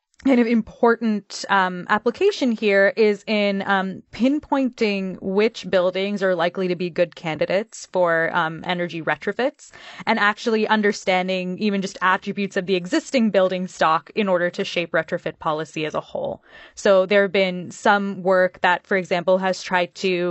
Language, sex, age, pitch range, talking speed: English, female, 20-39, 180-210 Hz, 160 wpm